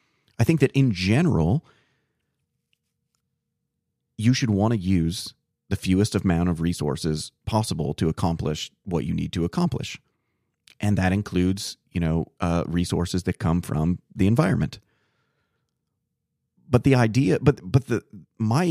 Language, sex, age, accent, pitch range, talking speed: English, male, 30-49, American, 90-120 Hz, 135 wpm